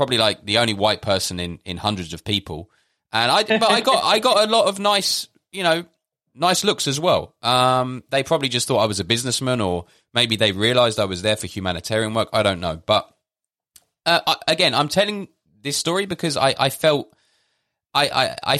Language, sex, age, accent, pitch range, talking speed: English, male, 20-39, British, 100-130 Hz, 205 wpm